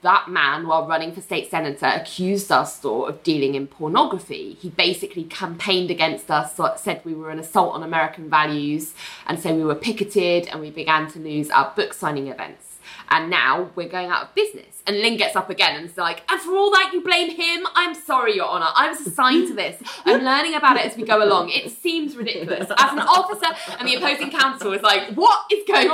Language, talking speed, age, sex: English, 215 wpm, 20-39, female